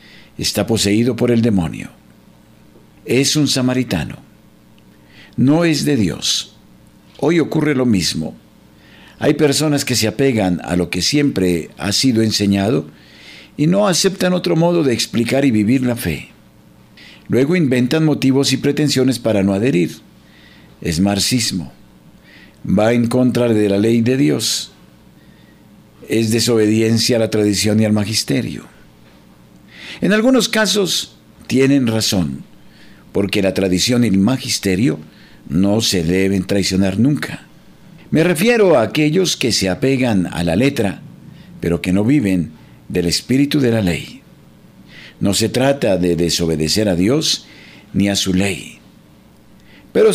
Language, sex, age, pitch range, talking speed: Spanish, male, 50-69, 95-140 Hz, 135 wpm